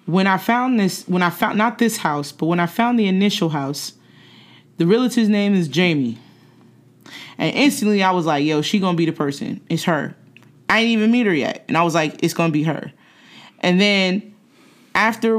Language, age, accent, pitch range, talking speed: English, 20-39, American, 155-190 Hz, 210 wpm